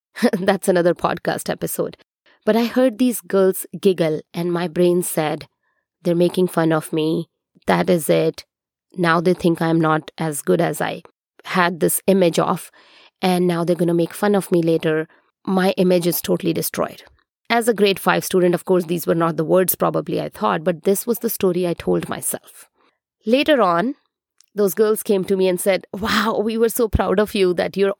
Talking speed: 195 wpm